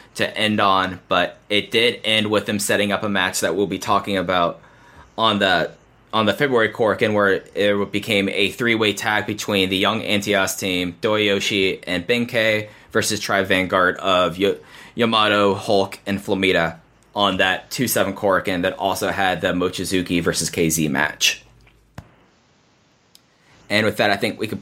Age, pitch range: 20-39, 95-120 Hz